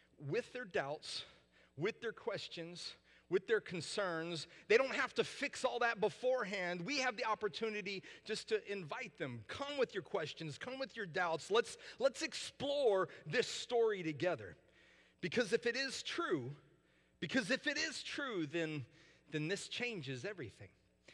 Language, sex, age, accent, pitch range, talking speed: English, male, 40-59, American, 155-255 Hz, 155 wpm